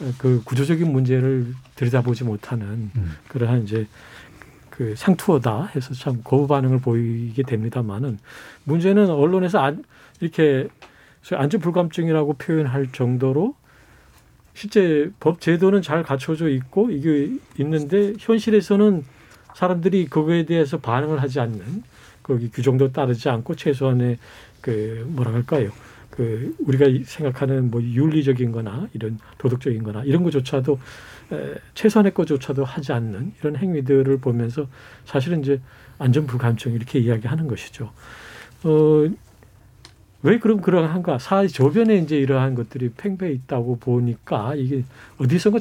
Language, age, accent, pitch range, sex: Korean, 40-59, native, 120-160 Hz, male